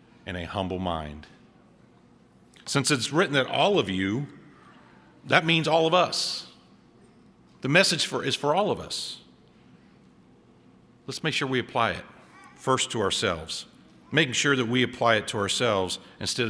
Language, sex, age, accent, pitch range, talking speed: English, male, 50-69, American, 100-135 Hz, 150 wpm